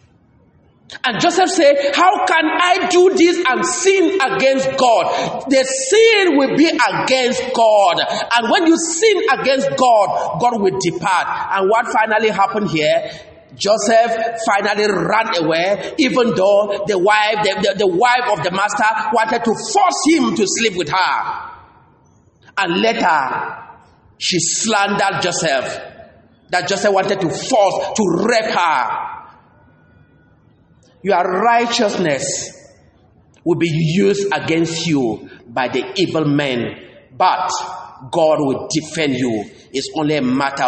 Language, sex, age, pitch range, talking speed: English, male, 40-59, 165-265 Hz, 125 wpm